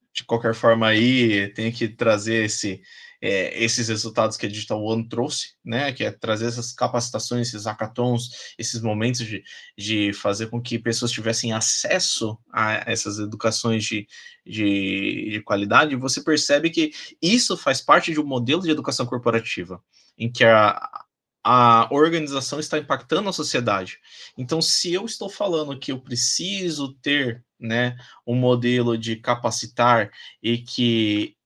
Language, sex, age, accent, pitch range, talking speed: Portuguese, male, 20-39, Brazilian, 110-135 Hz, 145 wpm